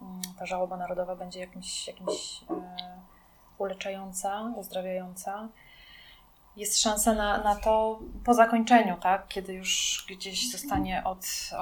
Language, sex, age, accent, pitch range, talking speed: Polish, female, 20-39, native, 180-205 Hz, 105 wpm